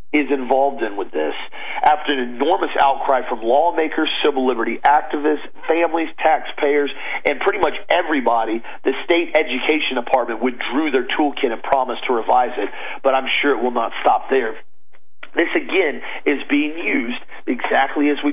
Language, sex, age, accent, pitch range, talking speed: English, male, 40-59, American, 130-185 Hz, 155 wpm